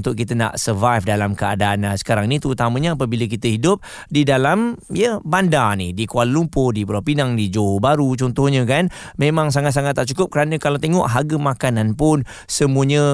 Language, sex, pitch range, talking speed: Malay, male, 115-145 Hz, 180 wpm